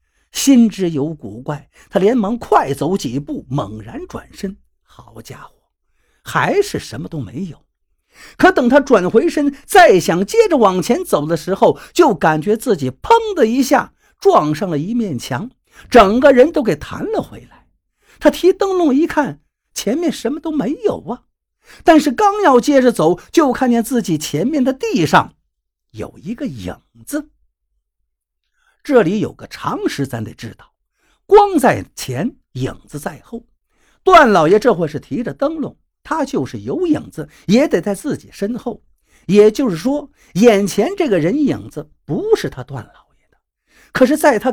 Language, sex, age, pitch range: Chinese, male, 50-69, 180-295 Hz